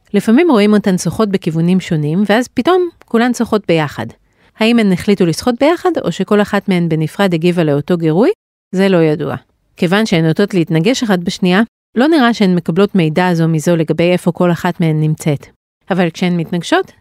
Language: Hebrew